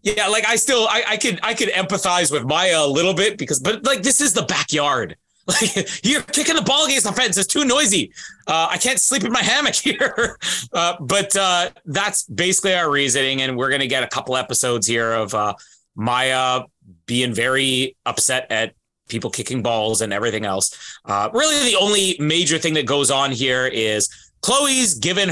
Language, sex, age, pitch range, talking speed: English, male, 30-49, 130-200 Hz, 195 wpm